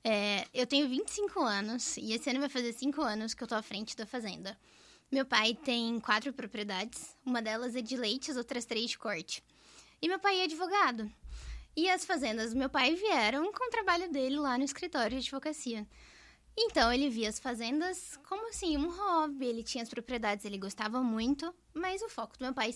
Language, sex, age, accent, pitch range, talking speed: Portuguese, female, 10-29, Brazilian, 215-280 Hz, 200 wpm